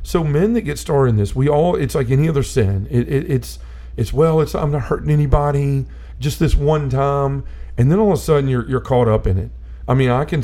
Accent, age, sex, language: American, 40-59, male, English